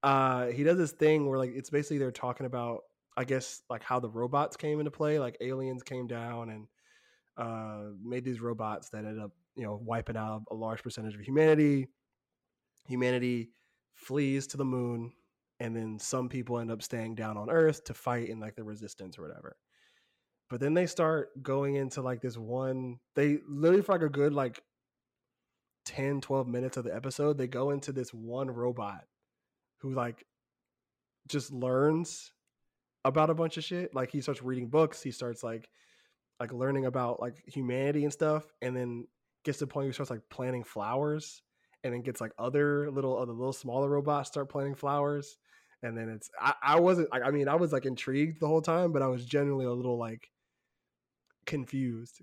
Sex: male